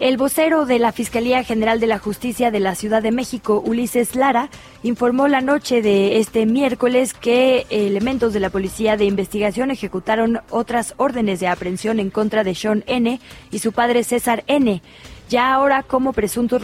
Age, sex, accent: 20-39, female, Mexican